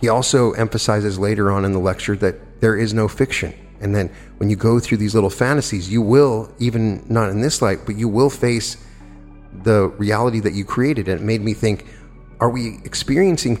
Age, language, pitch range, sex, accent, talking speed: 30-49, English, 95-115 Hz, male, American, 205 wpm